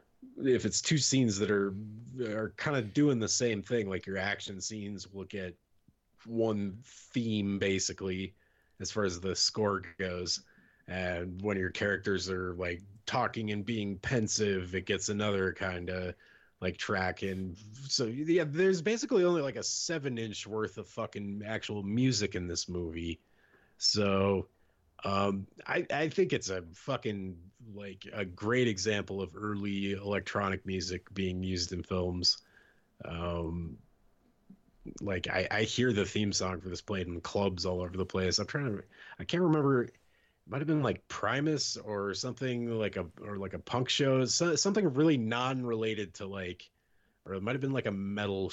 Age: 30-49